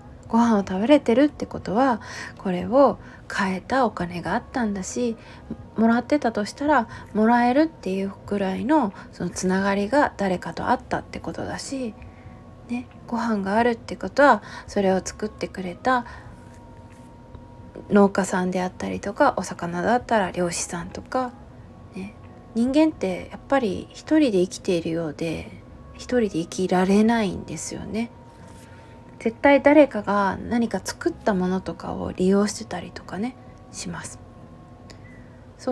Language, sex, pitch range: Japanese, female, 185-260 Hz